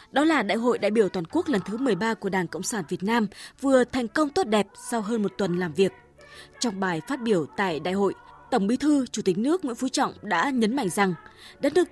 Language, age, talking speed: Vietnamese, 20-39, 250 wpm